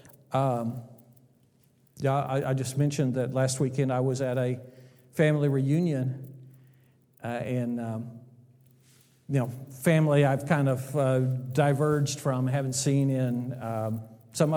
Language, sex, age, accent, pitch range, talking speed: English, male, 50-69, American, 125-140 Hz, 130 wpm